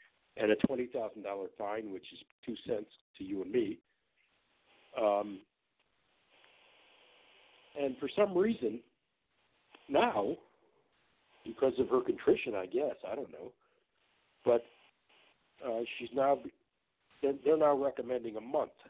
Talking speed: 115 wpm